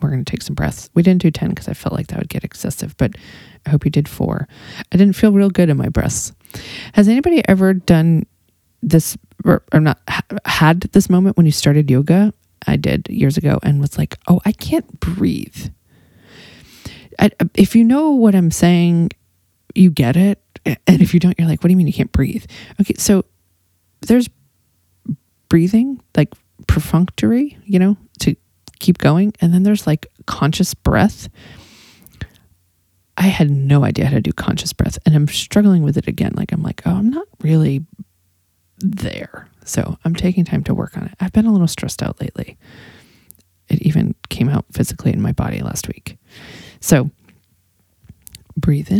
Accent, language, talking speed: American, English, 180 wpm